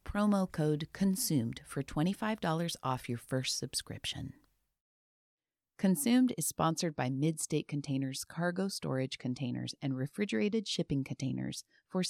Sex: female